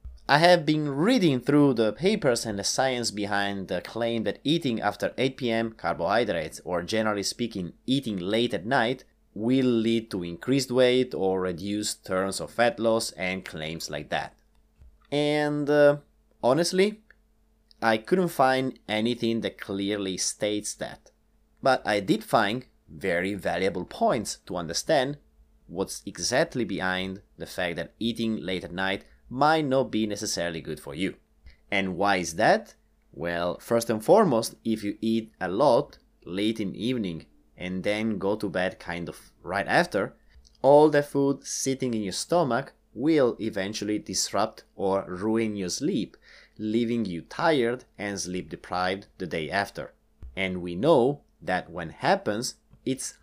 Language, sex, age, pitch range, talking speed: English, male, 30-49, 90-120 Hz, 150 wpm